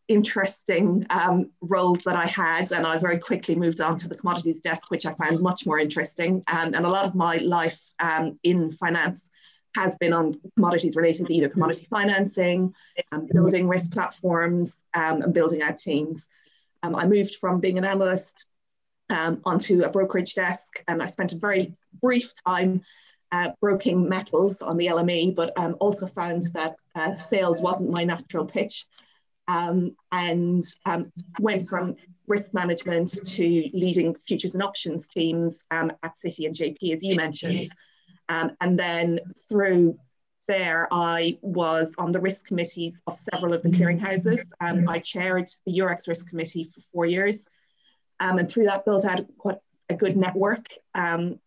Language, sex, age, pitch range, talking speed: English, female, 20-39, 165-185 Hz, 170 wpm